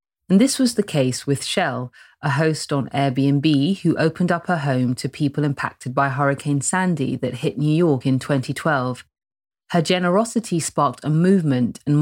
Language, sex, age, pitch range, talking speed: English, female, 30-49, 135-165 Hz, 170 wpm